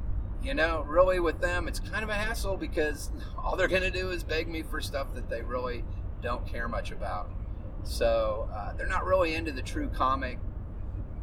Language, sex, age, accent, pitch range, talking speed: English, male, 30-49, American, 90-115 Hz, 200 wpm